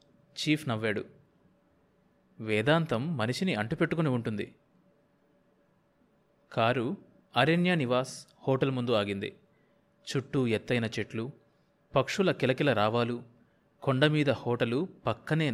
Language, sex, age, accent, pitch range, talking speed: Telugu, male, 30-49, native, 115-155 Hz, 80 wpm